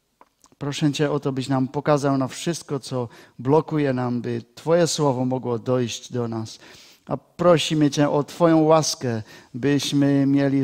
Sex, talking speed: male, 150 wpm